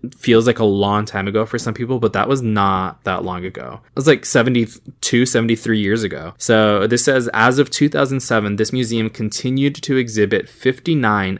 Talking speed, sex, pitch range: 185 wpm, male, 100-120 Hz